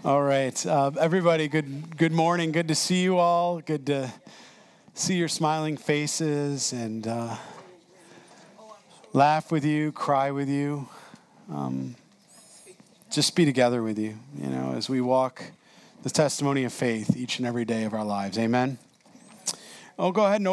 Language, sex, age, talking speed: English, male, 40-59, 155 wpm